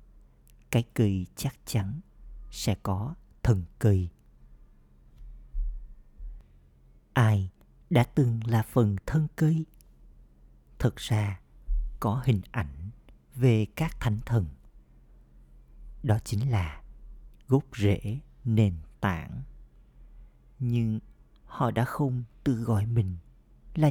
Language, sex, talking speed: Vietnamese, male, 100 wpm